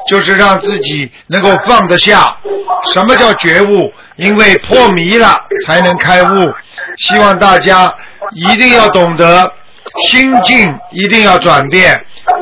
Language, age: Chinese, 50-69